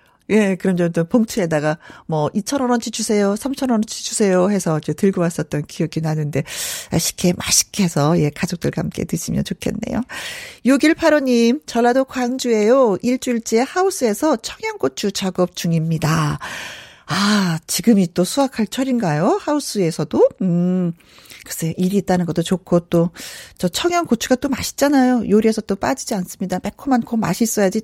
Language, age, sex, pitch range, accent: Korean, 40-59, female, 185-275 Hz, native